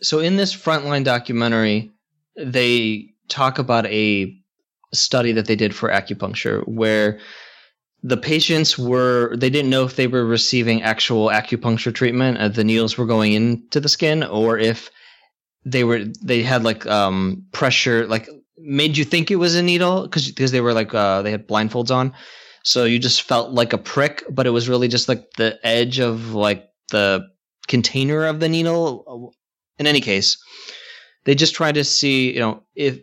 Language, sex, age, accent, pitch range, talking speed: English, male, 20-39, American, 115-145 Hz, 175 wpm